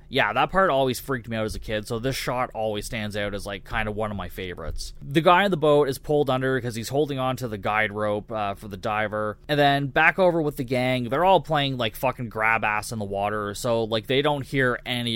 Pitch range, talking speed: 110-165 Hz, 265 wpm